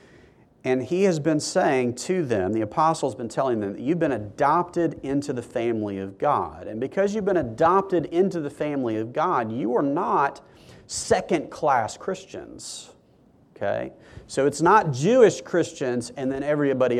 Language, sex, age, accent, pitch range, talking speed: English, male, 40-59, American, 110-155 Hz, 155 wpm